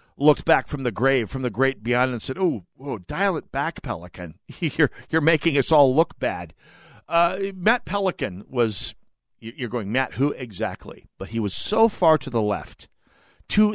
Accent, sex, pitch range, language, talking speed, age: American, male, 120-195 Hz, English, 180 wpm, 50-69